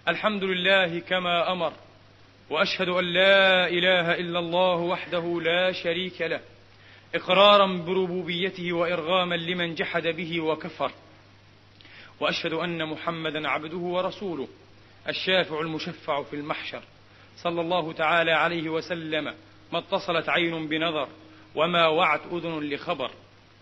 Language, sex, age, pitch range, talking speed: Arabic, male, 40-59, 145-170 Hz, 110 wpm